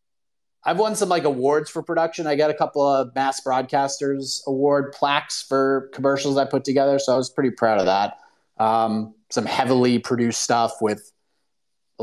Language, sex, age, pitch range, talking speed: English, male, 30-49, 125-150 Hz, 175 wpm